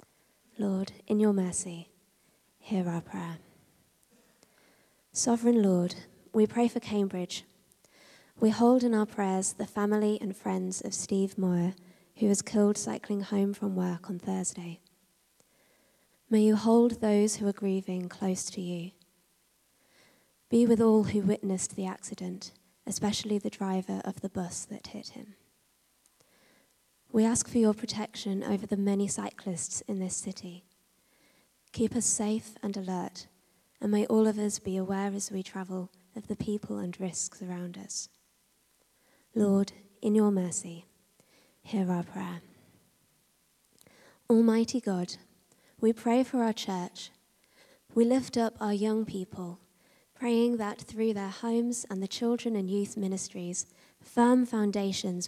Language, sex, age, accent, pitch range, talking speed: English, female, 20-39, British, 185-220 Hz, 140 wpm